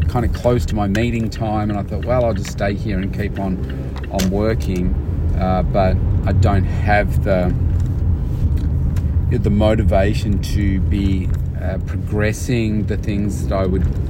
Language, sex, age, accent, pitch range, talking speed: English, male, 30-49, Australian, 90-105 Hz, 160 wpm